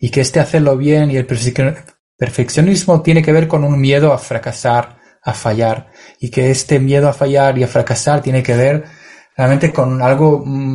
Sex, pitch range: male, 125-150 Hz